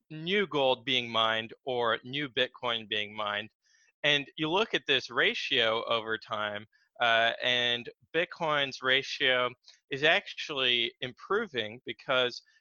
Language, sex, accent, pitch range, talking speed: English, male, American, 115-140 Hz, 120 wpm